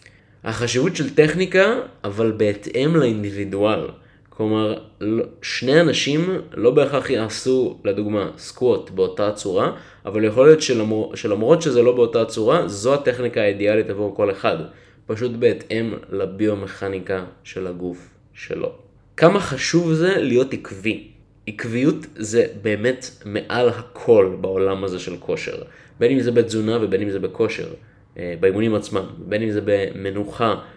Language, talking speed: Hebrew, 125 wpm